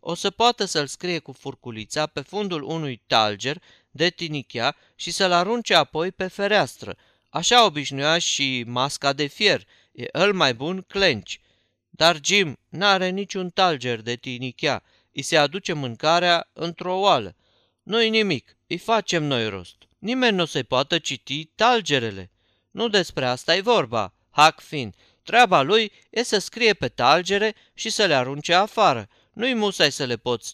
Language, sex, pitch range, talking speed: Romanian, male, 125-190 Hz, 160 wpm